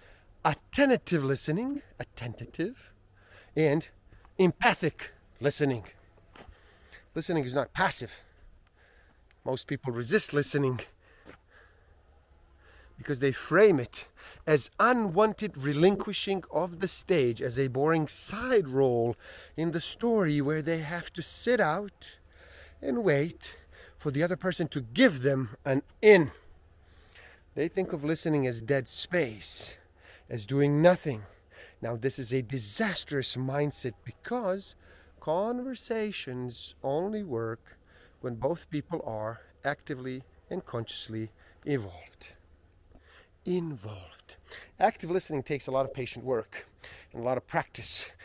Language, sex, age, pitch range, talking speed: English, male, 30-49, 100-170 Hz, 115 wpm